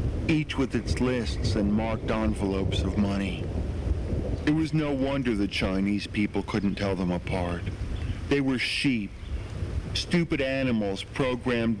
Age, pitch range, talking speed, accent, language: 50-69, 95-115 Hz, 130 wpm, American, English